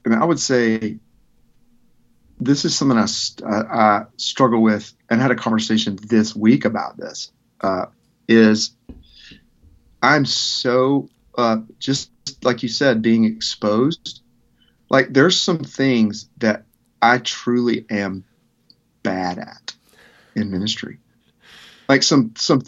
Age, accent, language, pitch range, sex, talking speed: 30-49, American, English, 110-130 Hz, male, 120 wpm